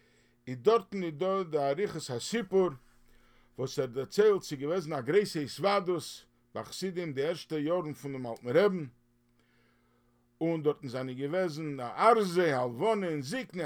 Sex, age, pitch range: male, 50-69, 130-205 Hz